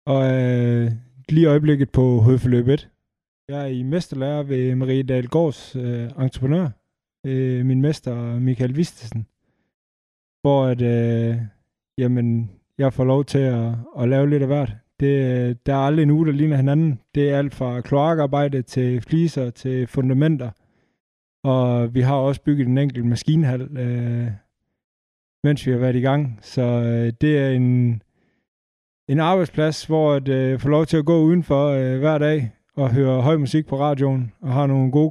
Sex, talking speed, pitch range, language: male, 160 wpm, 125-150 Hz, Danish